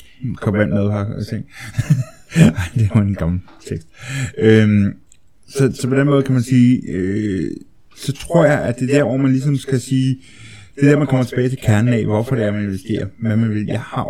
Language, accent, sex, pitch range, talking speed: Danish, native, male, 100-125 Hz, 215 wpm